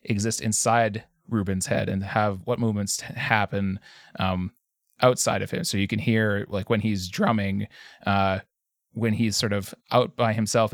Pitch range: 100-115 Hz